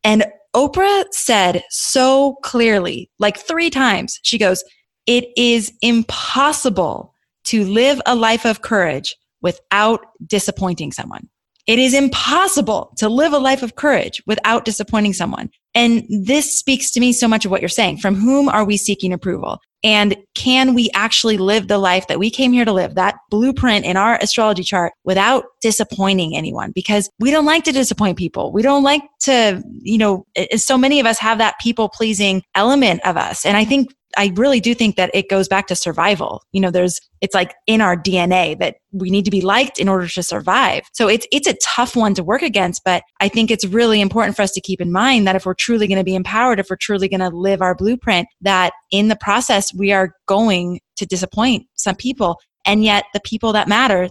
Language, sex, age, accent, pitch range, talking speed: English, female, 20-39, American, 195-240 Hz, 200 wpm